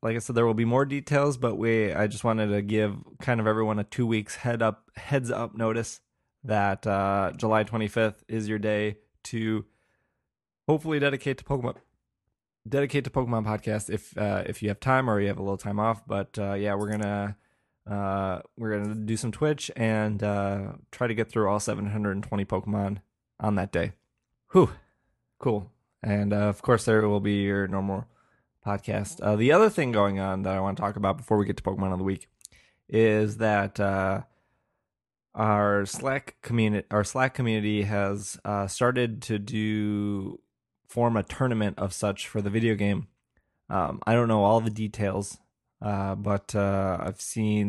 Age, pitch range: 20-39, 100-115 Hz